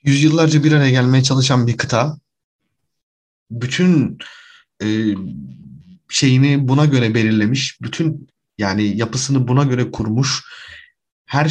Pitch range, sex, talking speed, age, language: 115-140 Hz, male, 105 wpm, 30-49, Turkish